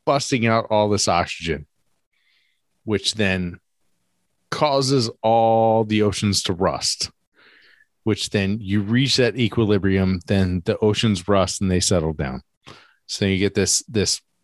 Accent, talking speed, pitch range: American, 135 wpm, 95-115 Hz